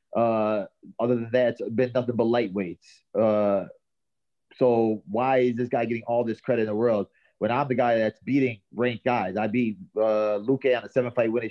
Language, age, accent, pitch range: English, 30-49, American, 105-125 Hz